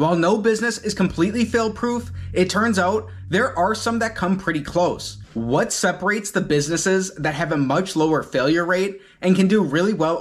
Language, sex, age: English, male, 30-49